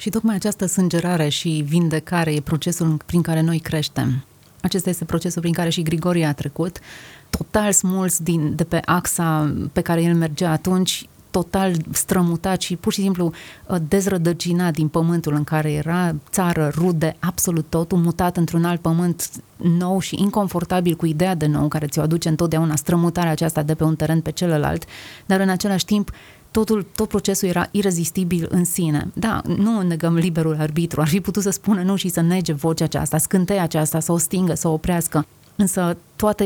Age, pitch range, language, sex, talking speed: 30-49, 160-180 Hz, Romanian, female, 175 wpm